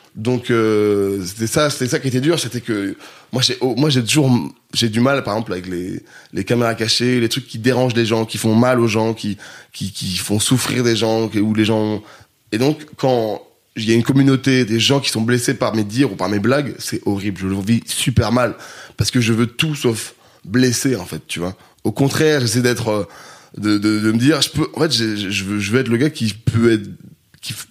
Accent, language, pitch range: French, French, 105-130 Hz